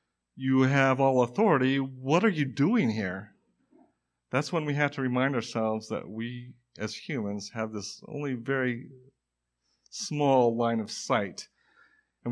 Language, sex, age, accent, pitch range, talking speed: English, male, 50-69, American, 110-130 Hz, 140 wpm